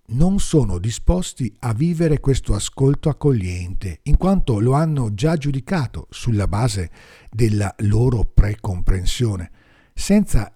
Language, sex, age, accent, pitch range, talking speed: Italian, male, 50-69, native, 95-135 Hz, 115 wpm